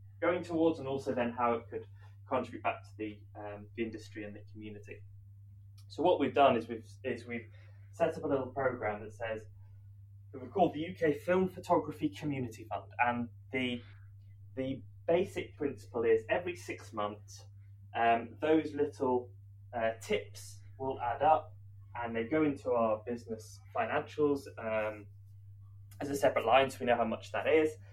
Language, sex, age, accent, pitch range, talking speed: English, male, 20-39, British, 100-130 Hz, 165 wpm